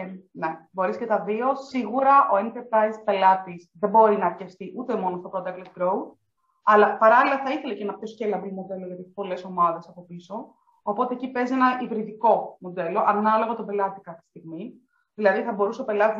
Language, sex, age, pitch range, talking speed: Greek, female, 20-39, 190-245 Hz, 180 wpm